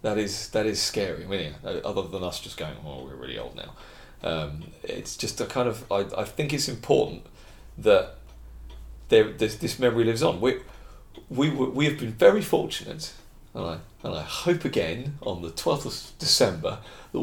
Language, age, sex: English, 40-59, male